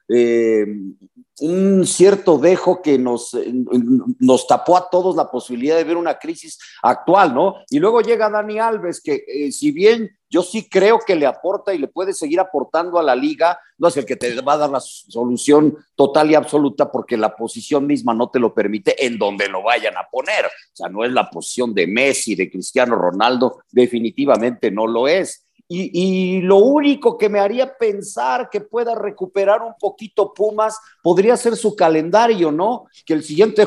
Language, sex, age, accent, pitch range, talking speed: Spanish, male, 50-69, Mexican, 150-215 Hz, 185 wpm